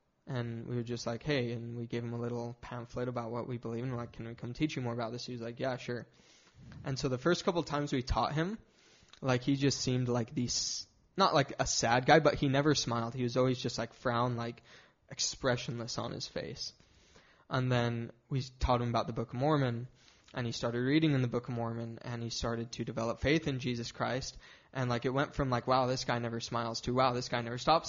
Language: English